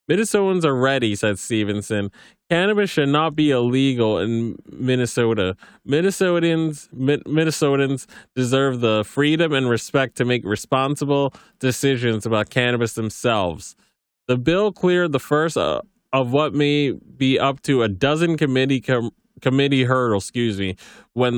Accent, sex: American, male